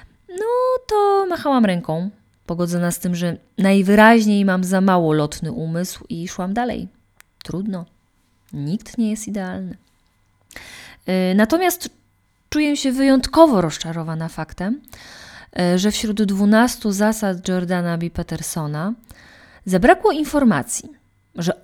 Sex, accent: female, native